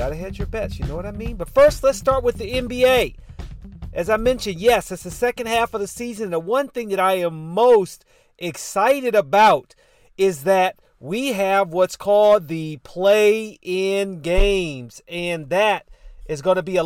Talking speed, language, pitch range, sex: 190 wpm, English, 185-240 Hz, male